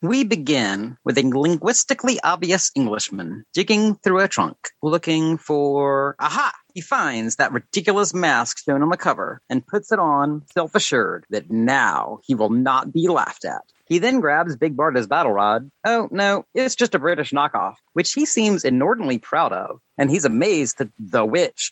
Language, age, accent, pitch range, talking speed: English, 40-59, American, 130-195 Hz, 170 wpm